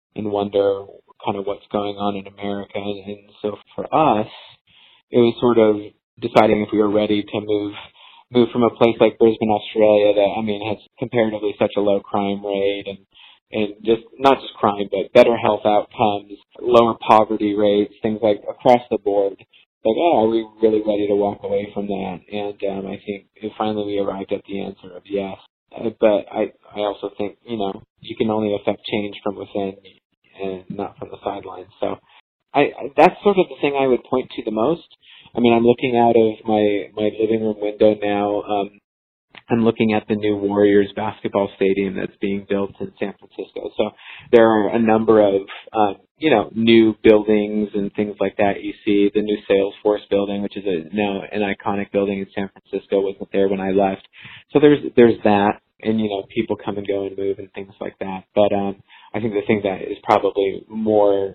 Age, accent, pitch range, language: 20-39, American, 100-110 Hz, English